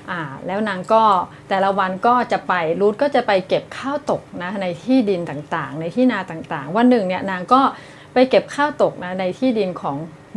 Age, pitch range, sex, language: 30-49, 175-245 Hz, female, Thai